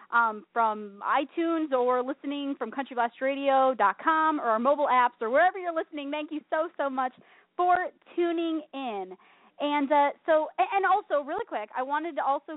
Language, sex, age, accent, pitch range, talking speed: English, female, 20-39, American, 230-315 Hz, 160 wpm